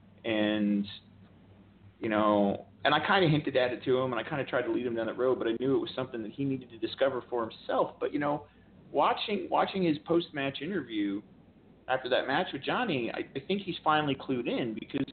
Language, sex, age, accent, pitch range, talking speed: English, male, 30-49, American, 115-180 Hz, 225 wpm